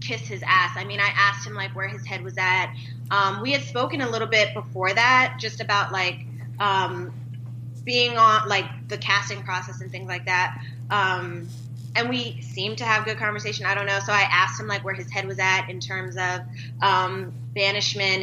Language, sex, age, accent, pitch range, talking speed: English, female, 20-39, American, 120-170 Hz, 205 wpm